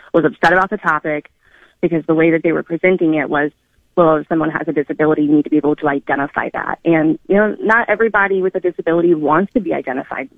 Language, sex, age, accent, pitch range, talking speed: English, female, 20-39, American, 145-170 Hz, 230 wpm